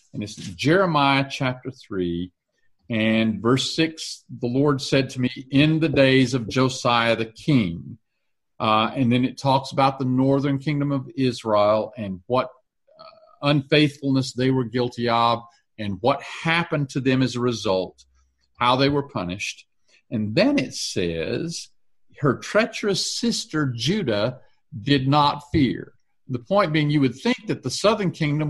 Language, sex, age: English, male, 50-69